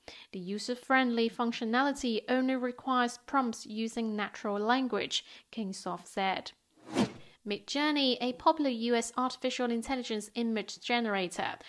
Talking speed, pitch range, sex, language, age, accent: 100 wpm, 205-245 Hz, female, English, 30-49, British